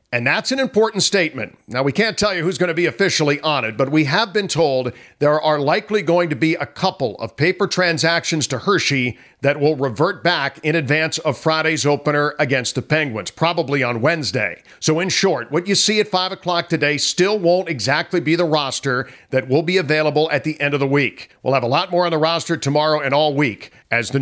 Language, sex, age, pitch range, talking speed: English, male, 50-69, 135-175 Hz, 225 wpm